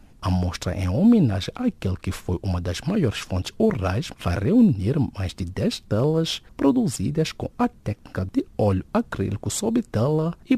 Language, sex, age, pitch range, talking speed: English, male, 50-69, 95-145 Hz, 160 wpm